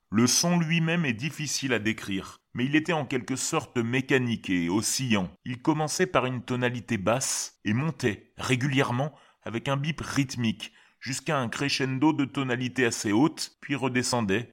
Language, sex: French, male